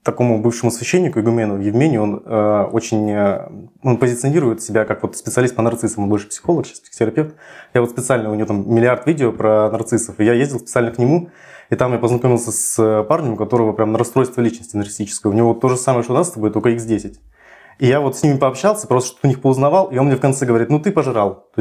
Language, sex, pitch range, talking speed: Russian, male, 110-135 Hz, 220 wpm